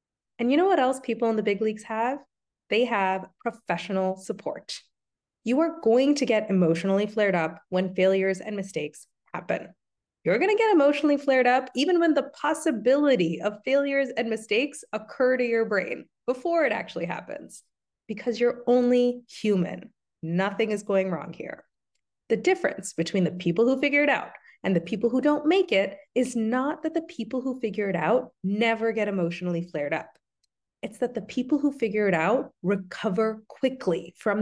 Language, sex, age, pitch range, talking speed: English, female, 20-39, 195-260 Hz, 175 wpm